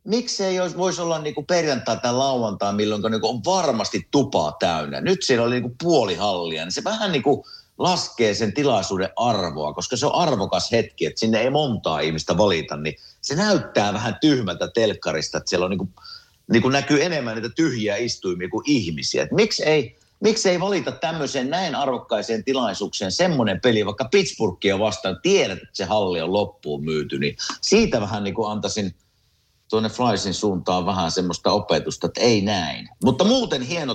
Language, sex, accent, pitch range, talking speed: Finnish, male, native, 100-155 Hz, 170 wpm